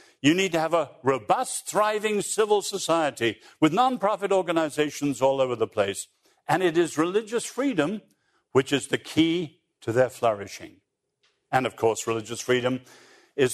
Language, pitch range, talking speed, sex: English, 130-210 Hz, 150 wpm, male